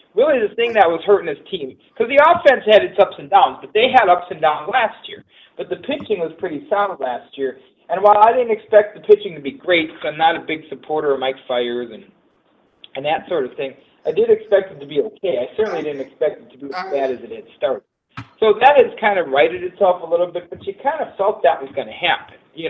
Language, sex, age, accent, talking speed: English, male, 40-59, American, 260 wpm